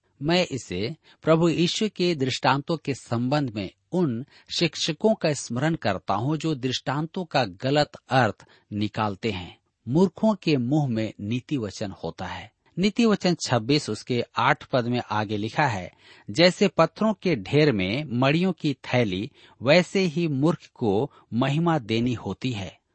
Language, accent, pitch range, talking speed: Hindi, native, 110-155 Hz, 145 wpm